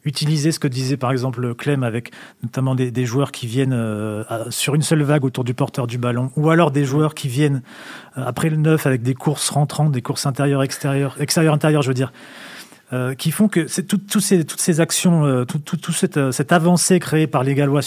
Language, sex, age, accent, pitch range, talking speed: French, male, 40-59, French, 140-170 Hz, 230 wpm